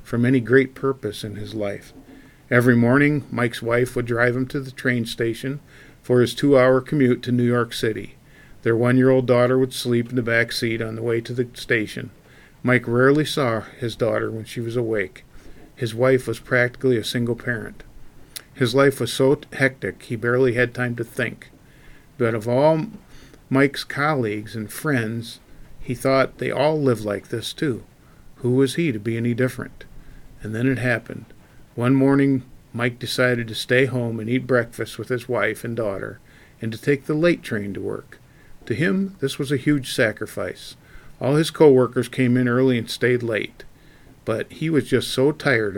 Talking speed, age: 180 wpm, 50-69